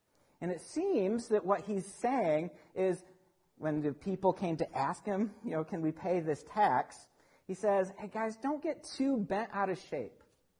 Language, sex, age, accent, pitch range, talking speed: English, male, 50-69, American, 155-205 Hz, 185 wpm